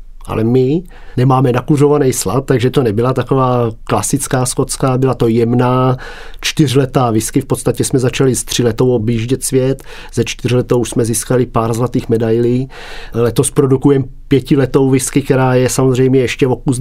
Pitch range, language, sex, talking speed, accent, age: 115-130 Hz, Czech, male, 150 wpm, native, 40-59